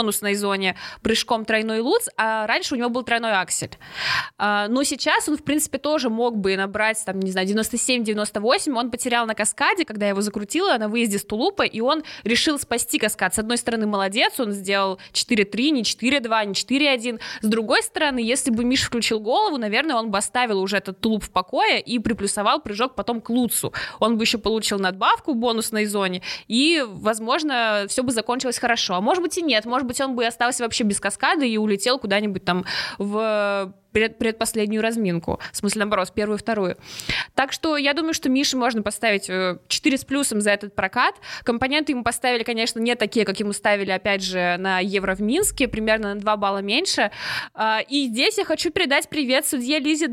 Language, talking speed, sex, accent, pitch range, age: Russian, 190 wpm, female, native, 210-275 Hz, 20-39